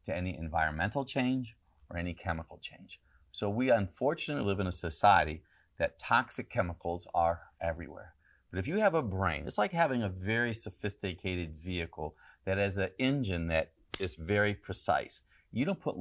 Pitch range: 85-105 Hz